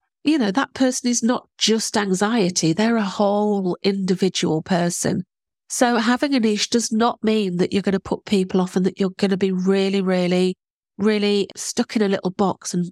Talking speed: 185 wpm